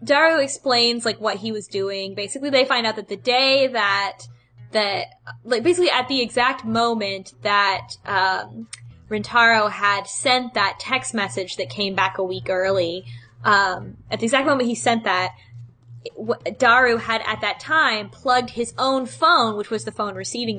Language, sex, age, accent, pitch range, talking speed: English, female, 10-29, American, 185-240 Hz, 170 wpm